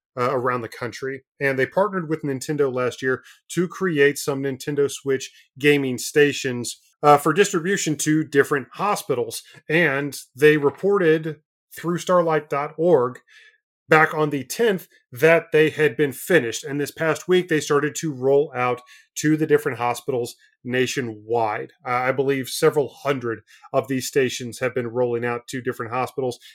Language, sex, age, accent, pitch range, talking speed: English, male, 30-49, American, 125-155 Hz, 150 wpm